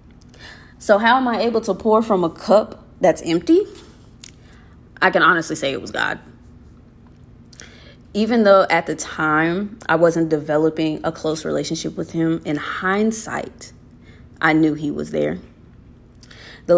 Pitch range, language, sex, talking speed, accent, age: 150-185 Hz, English, female, 145 wpm, American, 20-39